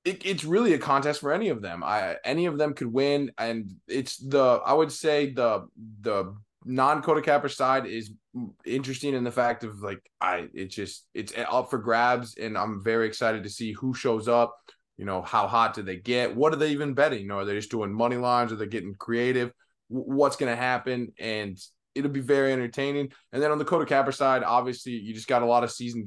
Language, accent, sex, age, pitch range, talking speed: English, American, male, 20-39, 110-135 Hz, 215 wpm